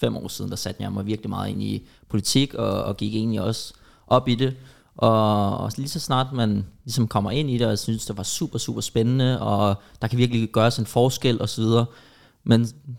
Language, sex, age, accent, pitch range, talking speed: English, male, 20-39, Danish, 110-125 Hz, 215 wpm